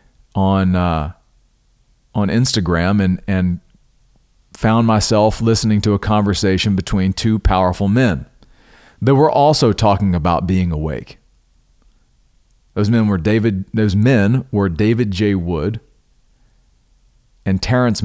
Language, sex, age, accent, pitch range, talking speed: English, male, 40-59, American, 95-115 Hz, 115 wpm